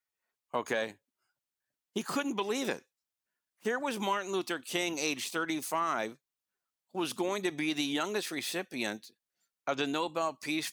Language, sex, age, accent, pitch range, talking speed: English, male, 60-79, American, 125-170 Hz, 135 wpm